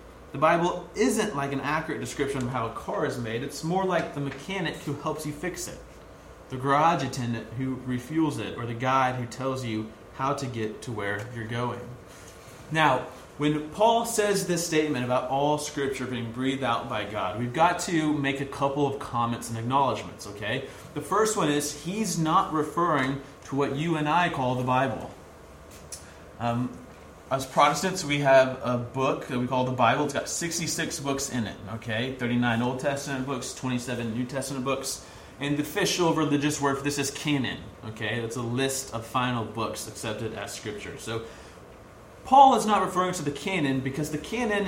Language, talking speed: English, 185 wpm